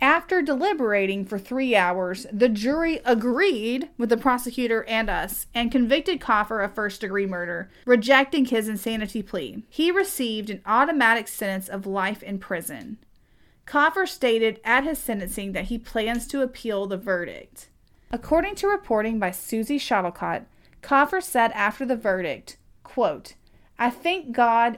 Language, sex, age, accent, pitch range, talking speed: English, female, 40-59, American, 200-255 Hz, 145 wpm